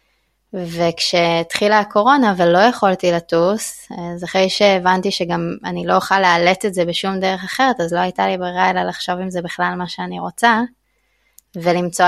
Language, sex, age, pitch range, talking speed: Hebrew, female, 20-39, 180-210 Hz, 160 wpm